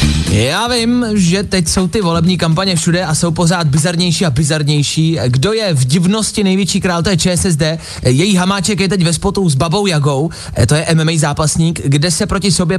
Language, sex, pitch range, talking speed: Czech, male, 145-195 Hz, 195 wpm